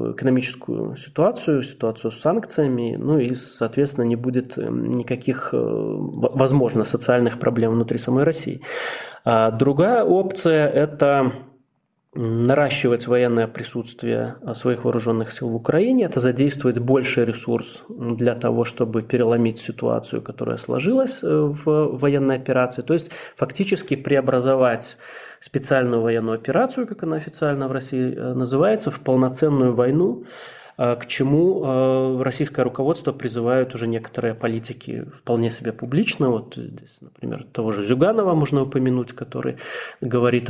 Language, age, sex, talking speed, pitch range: Russian, 20-39, male, 115 wpm, 120-145 Hz